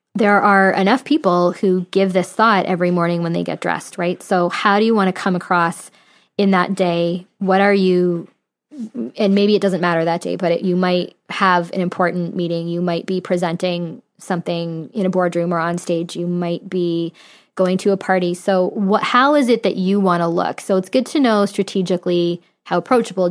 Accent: American